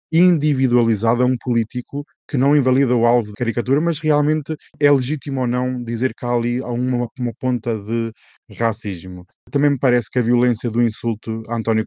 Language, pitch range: Portuguese, 110-130 Hz